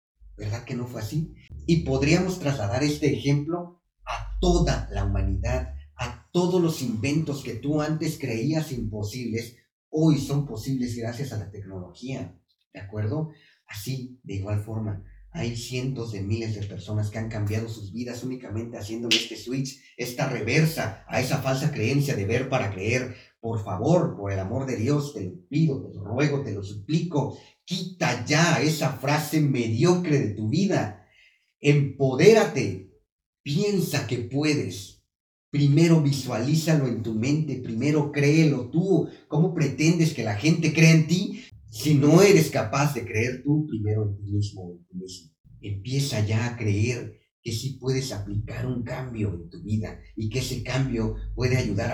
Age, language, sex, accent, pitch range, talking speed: 40-59, Spanish, male, Mexican, 110-150 Hz, 155 wpm